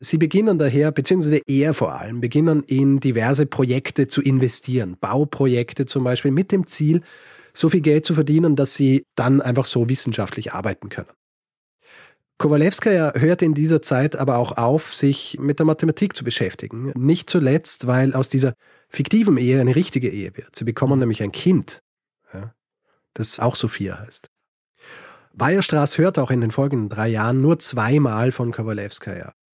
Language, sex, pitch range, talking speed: German, male, 120-155 Hz, 160 wpm